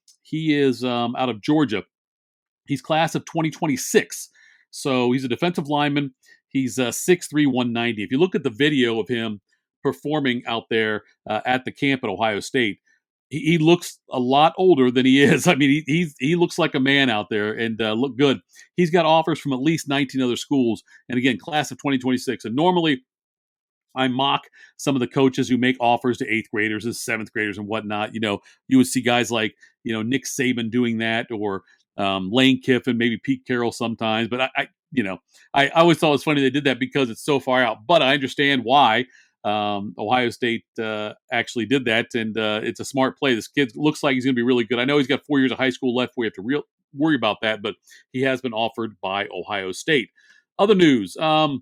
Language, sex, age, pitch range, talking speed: English, male, 50-69, 115-140 Hz, 220 wpm